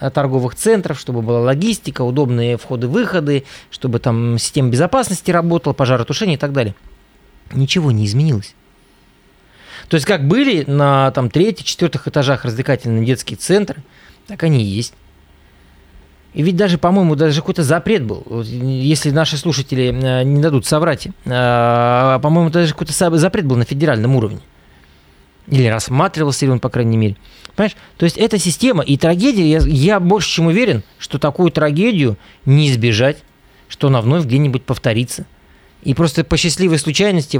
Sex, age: male, 20-39